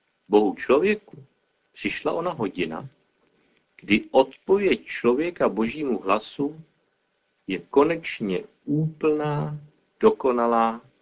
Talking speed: 75 wpm